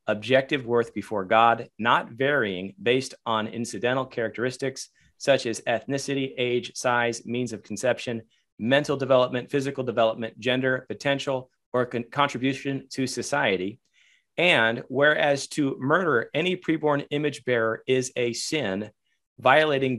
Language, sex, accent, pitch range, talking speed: English, male, American, 115-145 Hz, 120 wpm